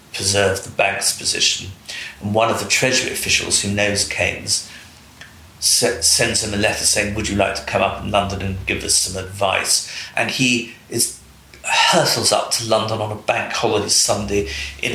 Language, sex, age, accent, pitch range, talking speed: English, male, 40-59, British, 95-110 Hz, 175 wpm